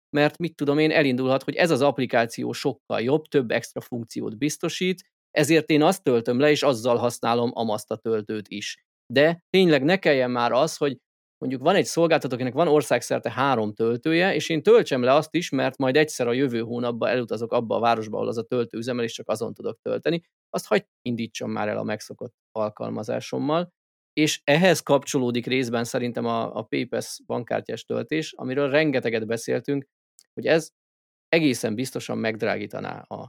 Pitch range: 115-155 Hz